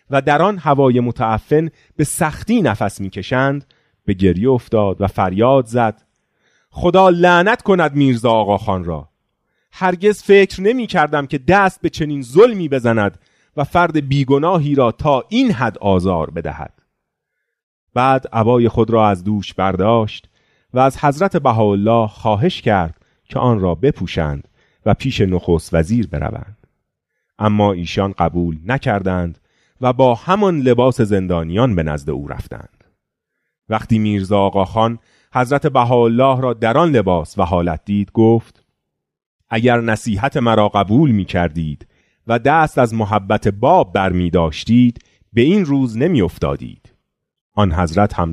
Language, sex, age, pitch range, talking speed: Persian, male, 30-49, 95-135 Hz, 135 wpm